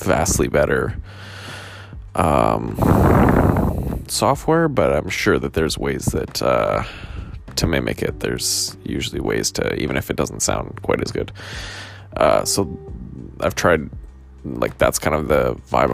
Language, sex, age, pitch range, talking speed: English, male, 20-39, 75-100 Hz, 140 wpm